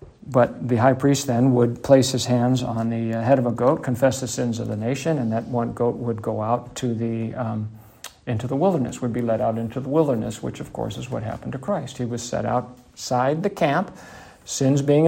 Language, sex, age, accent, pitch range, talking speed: English, male, 50-69, American, 115-135 Hz, 225 wpm